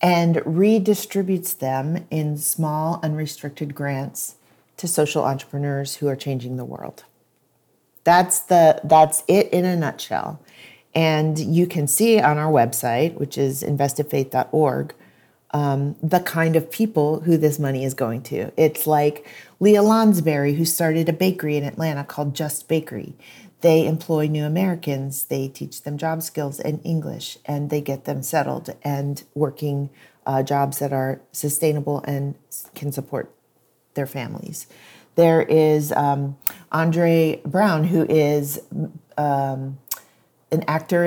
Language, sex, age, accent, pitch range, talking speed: English, female, 40-59, American, 140-165 Hz, 135 wpm